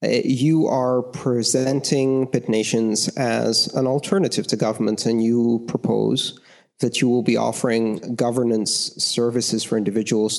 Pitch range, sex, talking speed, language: 120-145 Hz, male, 125 wpm, English